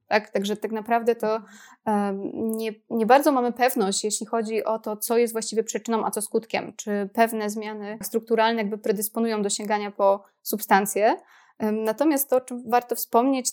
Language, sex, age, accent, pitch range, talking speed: Polish, female, 20-39, native, 205-230 Hz, 165 wpm